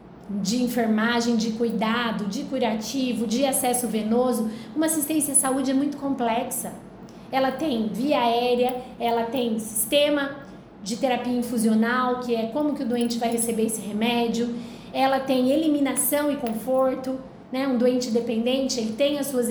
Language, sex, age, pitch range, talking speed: Portuguese, female, 20-39, 225-270 Hz, 150 wpm